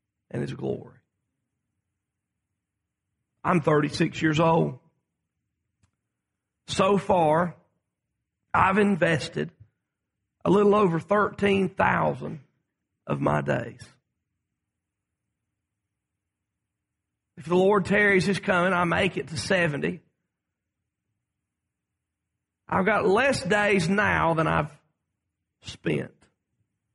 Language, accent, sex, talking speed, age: English, American, male, 80 wpm, 40-59